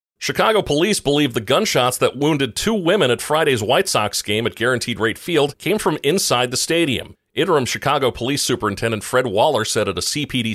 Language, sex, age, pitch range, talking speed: English, male, 40-59, 105-130 Hz, 190 wpm